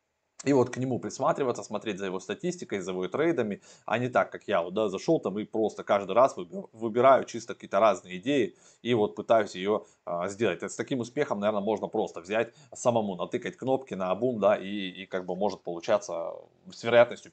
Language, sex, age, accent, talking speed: Russian, male, 20-39, native, 205 wpm